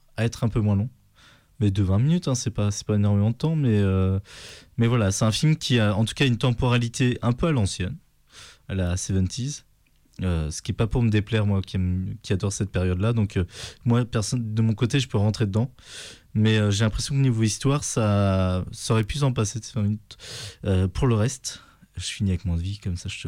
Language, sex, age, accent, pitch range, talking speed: French, male, 20-39, French, 95-115 Hz, 235 wpm